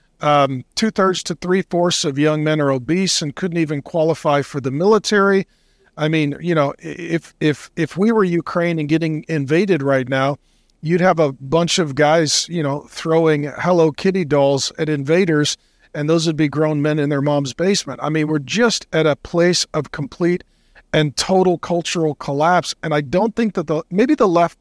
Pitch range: 150-185 Hz